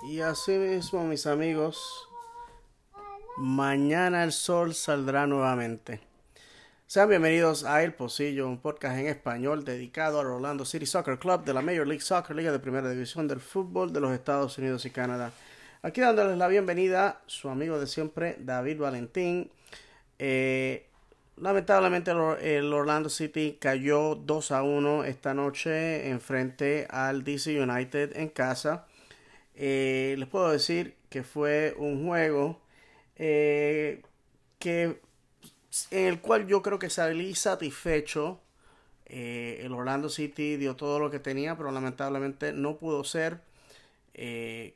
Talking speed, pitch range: 140 wpm, 135-160 Hz